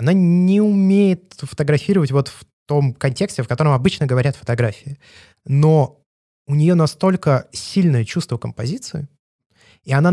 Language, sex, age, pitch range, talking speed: Russian, male, 20-39, 120-160 Hz, 130 wpm